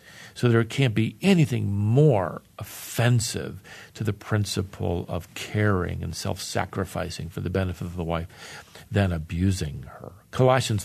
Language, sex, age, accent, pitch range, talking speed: English, male, 50-69, American, 100-125 Hz, 135 wpm